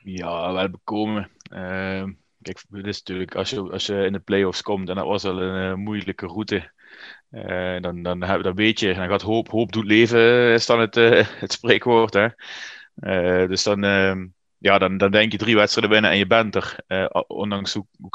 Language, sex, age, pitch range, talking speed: Dutch, male, 20-39, 95-110 Hz, 185 wpm